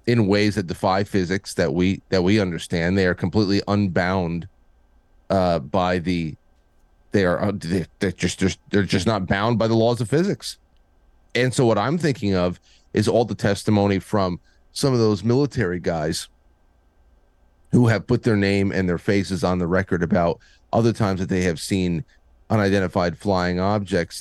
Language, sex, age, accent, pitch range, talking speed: English, male, 30-49, American, 85-110 Hz, 170 wpm